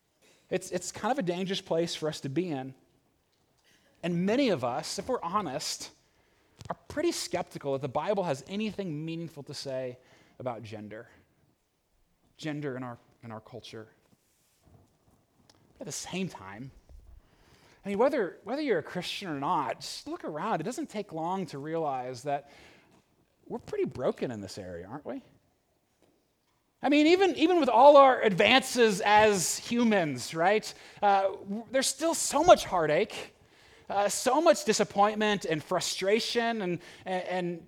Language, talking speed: English, 155 wpm